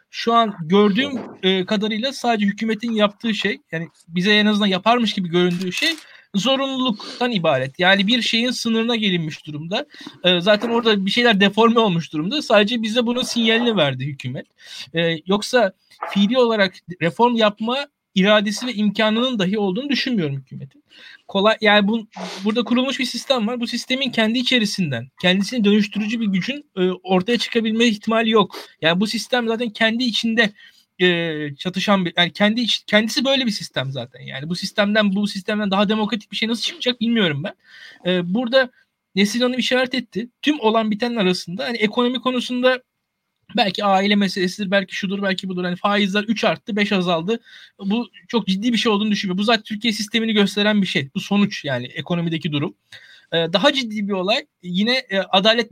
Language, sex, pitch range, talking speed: Turkish, male, 180-230 Hz, 165 wpm